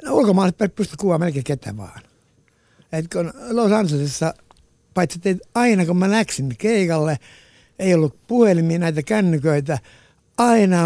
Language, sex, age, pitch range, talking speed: Finnish, male, 60-79, 130-170 Hz, 120 wpm